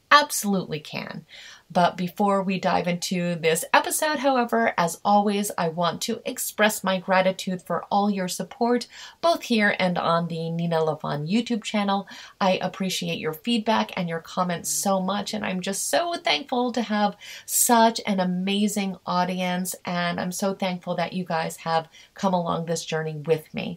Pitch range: 170-205 Hz